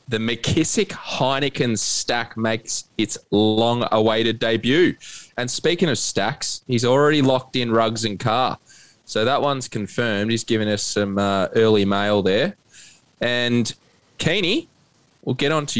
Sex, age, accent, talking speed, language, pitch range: male, 20-39, Australian, 135 wpm, English, 100-125 Hz